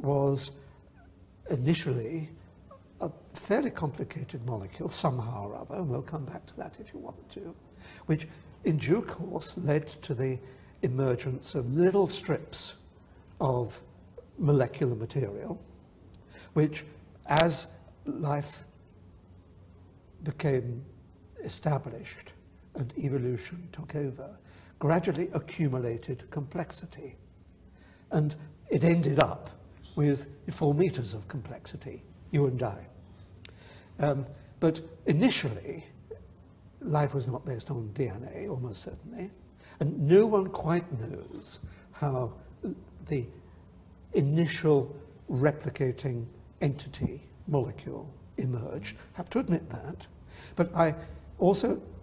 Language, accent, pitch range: Japanese, British, 95-150 Hz